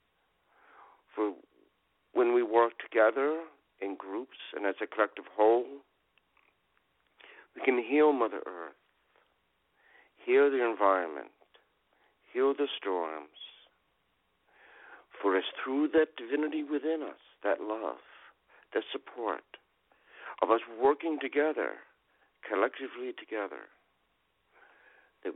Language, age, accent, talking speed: English, 60-79, American, 95 wpm